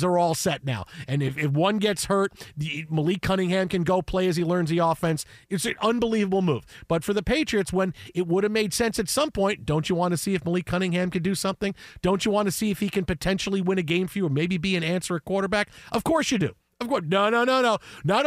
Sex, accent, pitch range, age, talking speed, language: male, American, 170-215 Hz, 40-59, 265 wpm, English